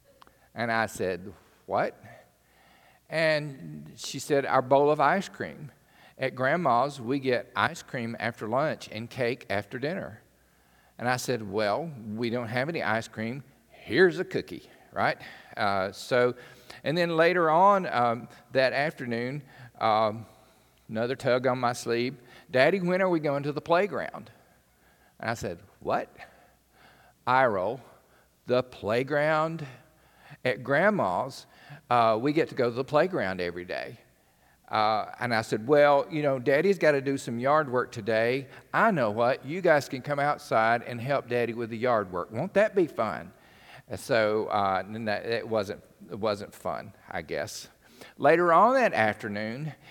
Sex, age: male, 50-69